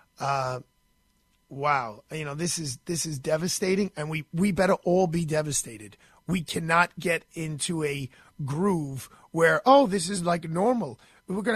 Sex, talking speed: male, 155 wpm